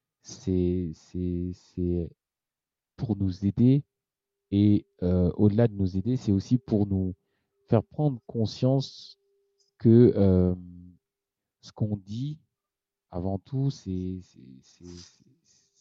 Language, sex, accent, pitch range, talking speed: French, male, French, 95-125 Hz, 120 wpm